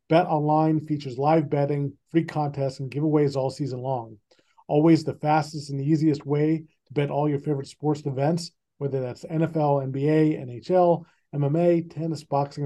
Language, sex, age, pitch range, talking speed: English, male, 40-59, 135-165 Hz, 150 wpm